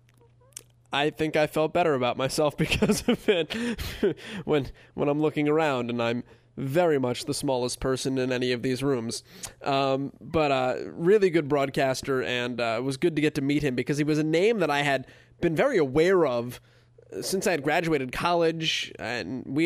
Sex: male